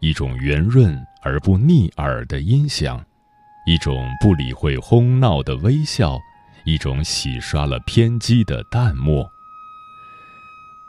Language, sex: Chinese, male